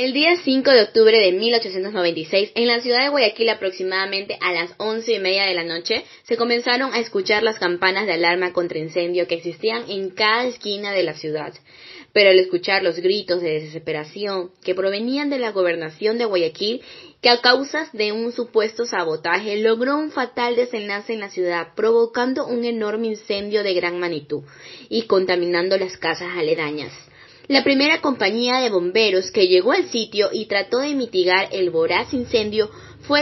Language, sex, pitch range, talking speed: Spanish, female, 180-245 Hz, 175 wpm